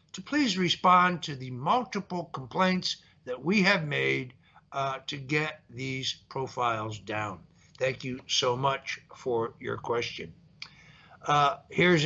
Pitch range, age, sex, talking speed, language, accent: 140-175 Hz, 60-79, male, 130 wpm, English, American